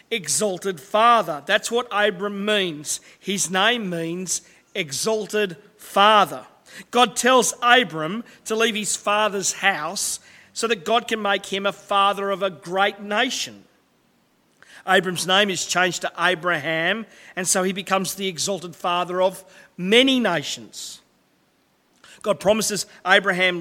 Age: 40-59